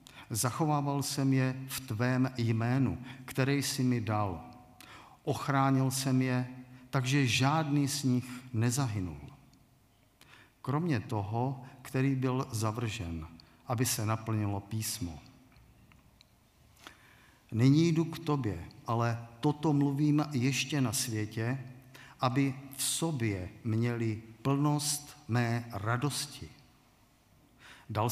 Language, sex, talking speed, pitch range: Czech, male, 95 wpm, 110-135 Hz